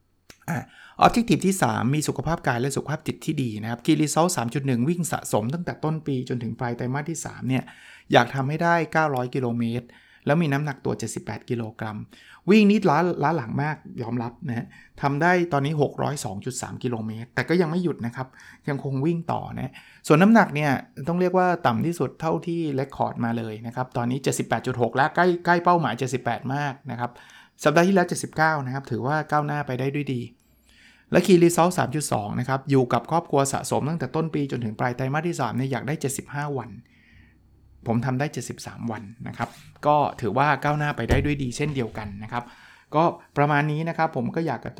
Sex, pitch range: male, 120-155 Hz